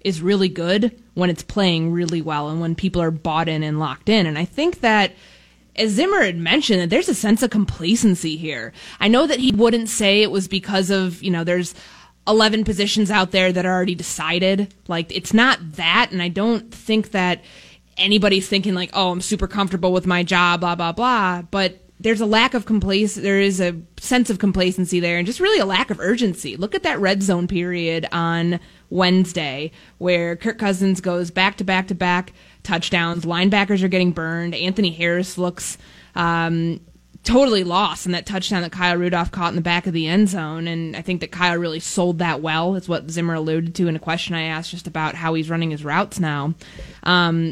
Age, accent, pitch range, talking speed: 20-39, American, 170-205 Hz, 205 wpm